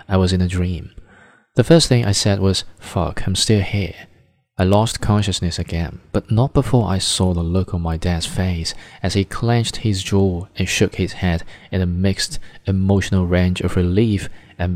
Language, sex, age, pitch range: Chinese, male, 20-39, 90-105 Hz